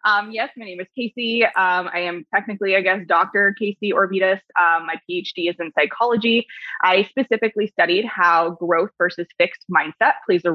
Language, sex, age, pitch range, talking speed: English, female, 20-39, 170-215 Hz, 175 wpm